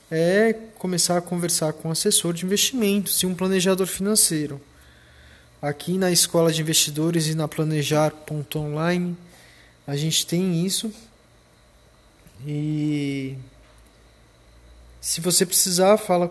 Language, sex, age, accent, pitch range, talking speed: Portuguese, male, 20-39, Brazilian, 150-195 Hz, 115 wpm